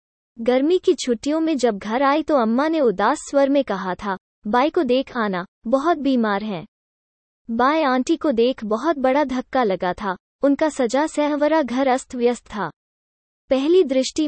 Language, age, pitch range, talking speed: Hindi, 20-39, 225-295 Hz, 165 wpm